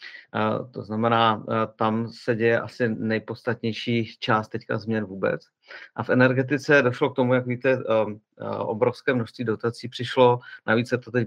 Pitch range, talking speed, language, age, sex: 110-120 Hz, 145 wpm, Czech, 40-59, male